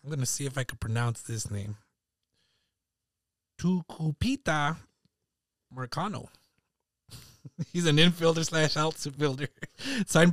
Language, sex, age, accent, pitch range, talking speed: English, male, 20-39, American, 125-155 Hz, 105 wpm